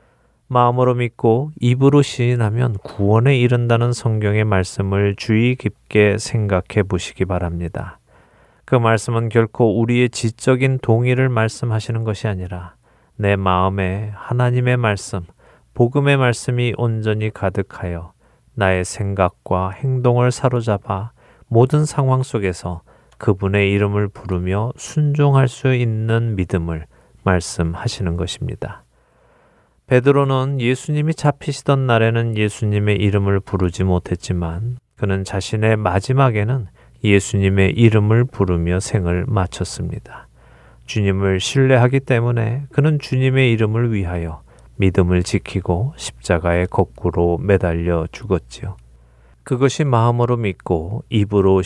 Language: Korean